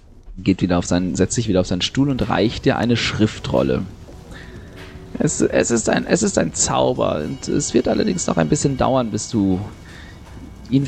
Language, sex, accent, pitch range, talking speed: German, male, German, 90-130 Hz, 190 wpm